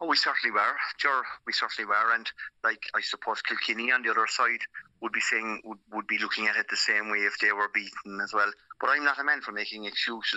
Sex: male